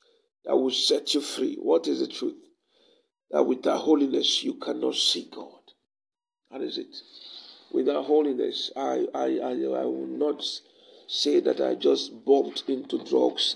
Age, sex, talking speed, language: 50-69, male, 150 wpm, English